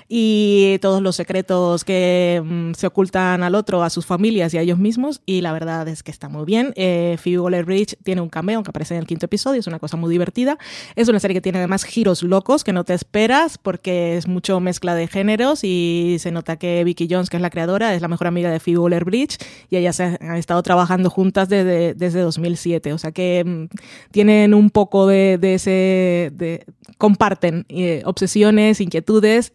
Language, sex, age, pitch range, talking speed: Spanish, female, 20-39, 175-205 Hz, 205 wpm